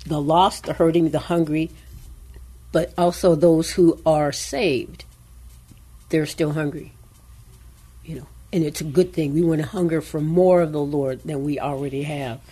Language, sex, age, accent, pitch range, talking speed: English, female, 60-79, American, 110-170 Hz, 170 wpm